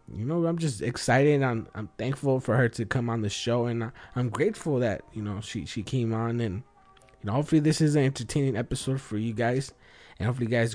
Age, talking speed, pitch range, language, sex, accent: 20-39, 230 wpm, 110-135 Hz, English, male, American